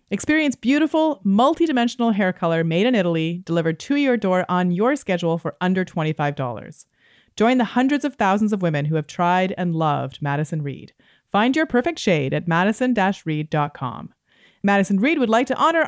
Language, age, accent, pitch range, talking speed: English, 30-49, American, 165-220 Hz, 165 wpm